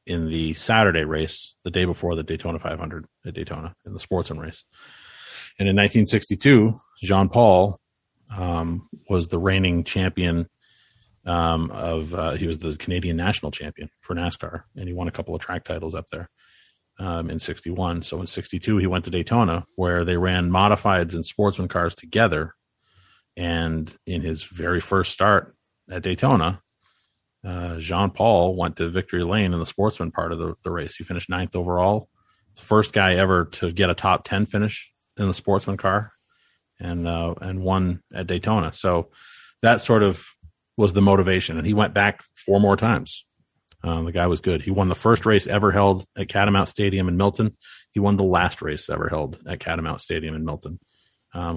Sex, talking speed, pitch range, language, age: male, 180 wpm, 85-100 Hz, English, 30-49